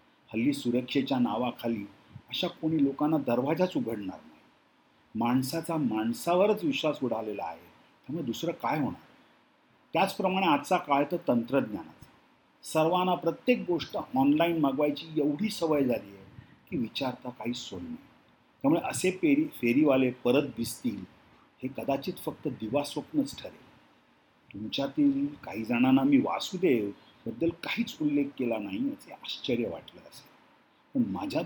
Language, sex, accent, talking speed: Marathi, male, native, 120 wpm